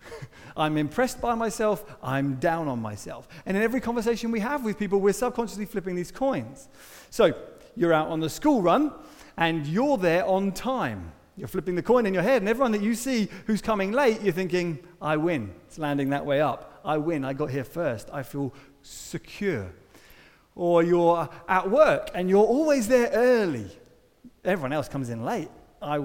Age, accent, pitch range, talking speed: 30-49, British, 145-210 Hz, 185 wpm